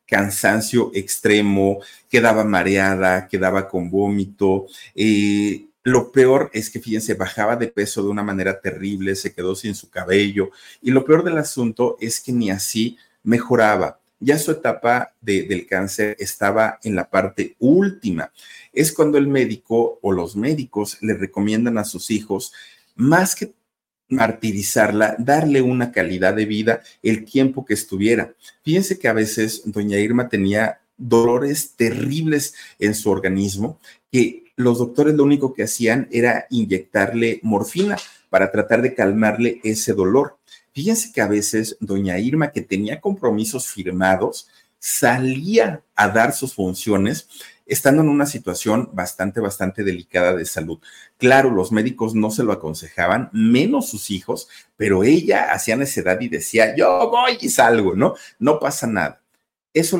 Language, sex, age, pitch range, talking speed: Spanish, male, 50-69, 100-130 Hz, 145 wpm